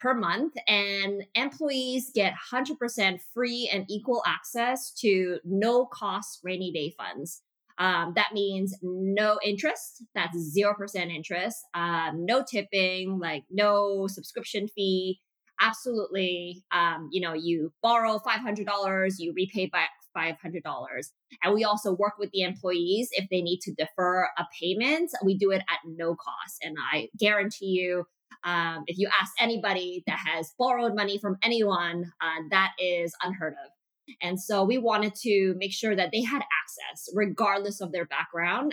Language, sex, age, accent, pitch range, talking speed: English, female, 20-39, American, 180-220 Hz, 150 wpm